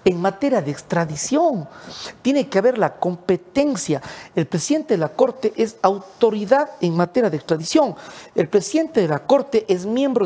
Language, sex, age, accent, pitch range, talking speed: English, male, 50-69, Mexican, 170-230 Hz, 160 wpm